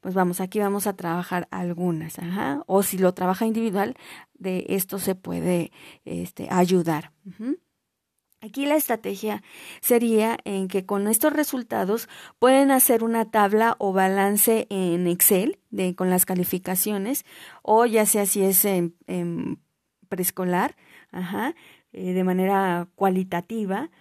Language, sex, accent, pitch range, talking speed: Spanish, female, Mexican, 180-215 Hz, 120 wpm